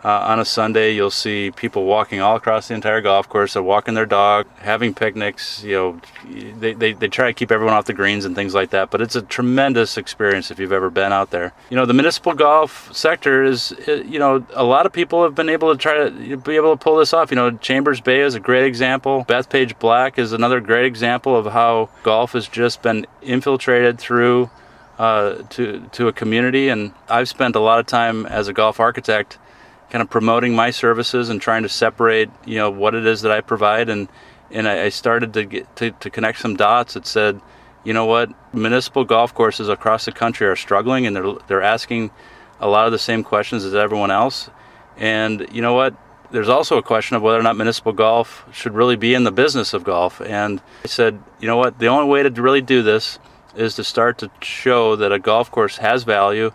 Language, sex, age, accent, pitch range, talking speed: English, male, 30-49, American, 110-125 Hz, 225 wpm